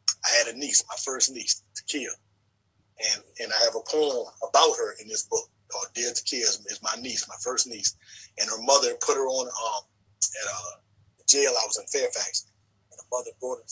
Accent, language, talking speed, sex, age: American, English, 210 wpm, male, 30-49